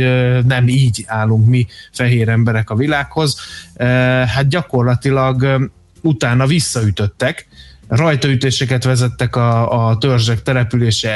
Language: Hungarian